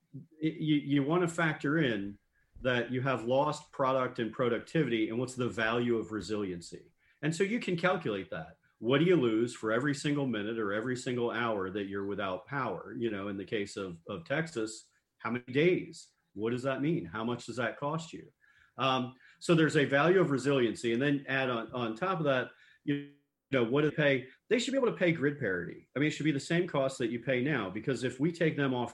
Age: 40-59